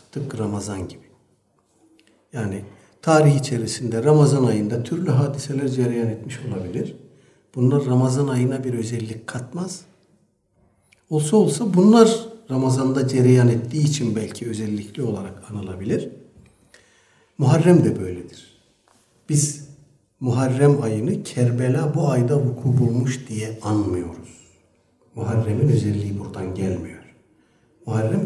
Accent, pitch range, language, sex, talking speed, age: native, 110-145 Hz, Turkish, male, 100 wpm, 60-79